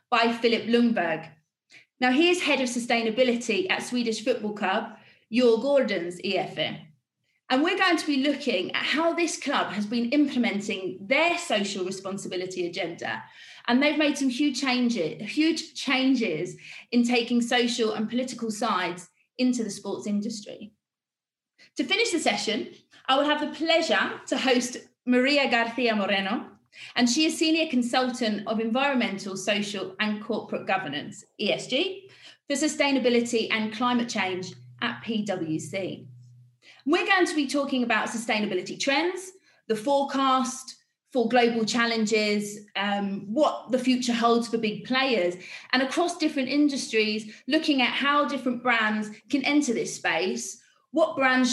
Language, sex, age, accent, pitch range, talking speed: English, female, 30-49, British, 215-275 Hz, 140 wpm